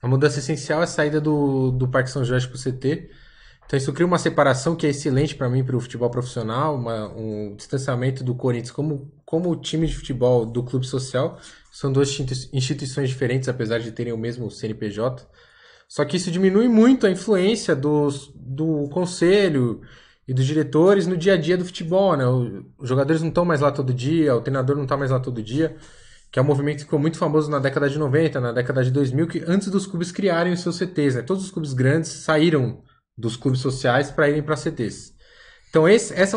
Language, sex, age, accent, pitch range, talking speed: Portuguese, male, 20-39, Brazilian, 130-180 Hz, 210 wpm